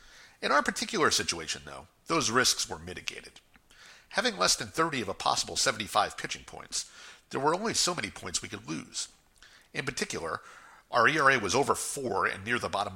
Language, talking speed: English, 180 wpm